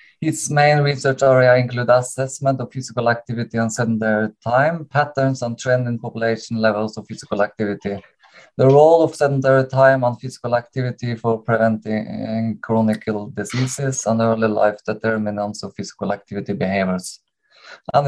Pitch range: 110-135 Hz